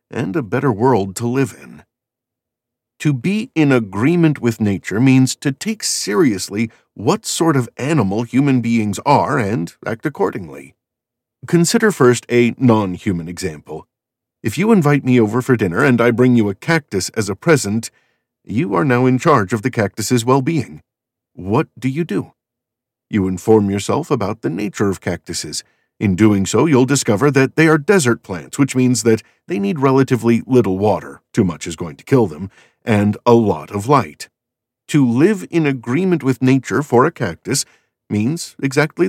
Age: 50-69